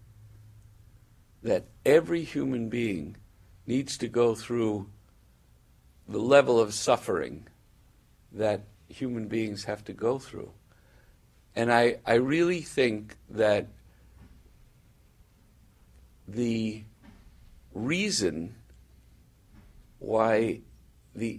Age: 60-79